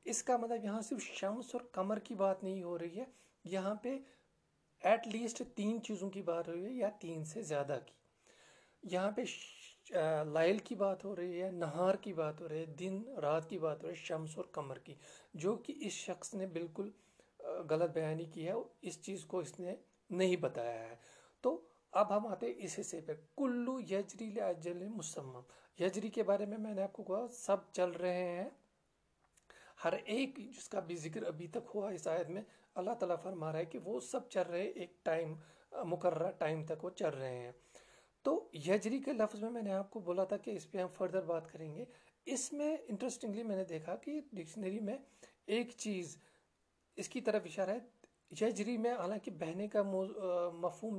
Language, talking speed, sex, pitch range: Urdu, 200 wpm, male, 170-225 Hz